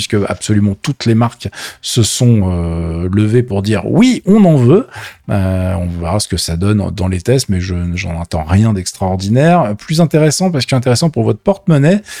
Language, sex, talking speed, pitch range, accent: French, male, 190 wpm, 100-140 Hz, French